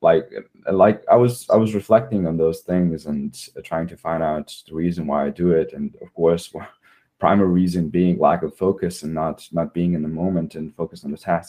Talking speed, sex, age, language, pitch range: 225 wpm, male, 20-39, English, 85-95 Hz